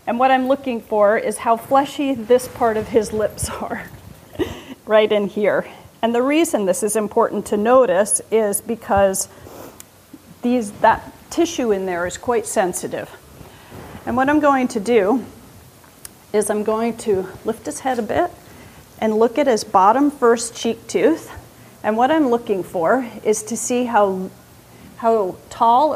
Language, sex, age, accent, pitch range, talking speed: English, female, 40-59, American, 205-250 Hz, 160 wpm